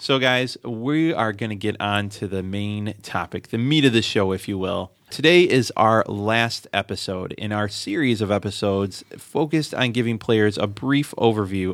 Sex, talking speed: male, 190 wpm